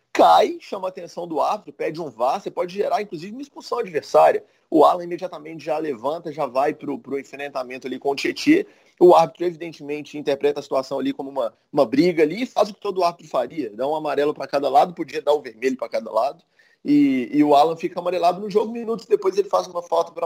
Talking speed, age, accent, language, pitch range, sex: 235 wpm, 30-49, Brazilian, Portuguese, 150-210 Hz, male